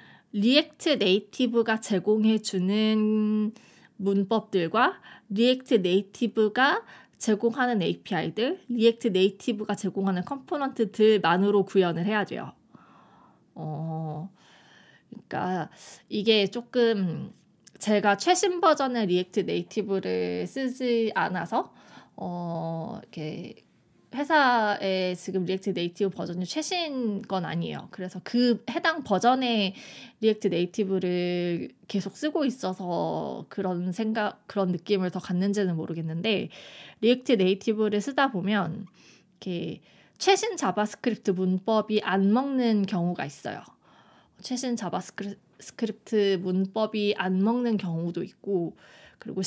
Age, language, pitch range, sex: 20-39, Korean, 185-235 Hz, female